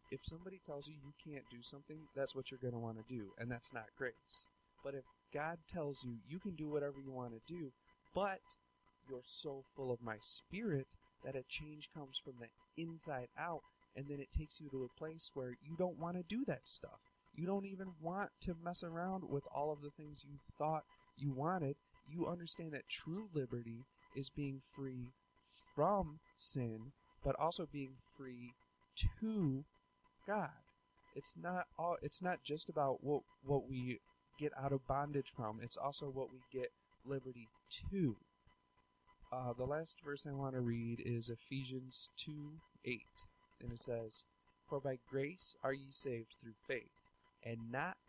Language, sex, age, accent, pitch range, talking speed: English, male, 30-49, American, 125-155 Hz, 180 wpm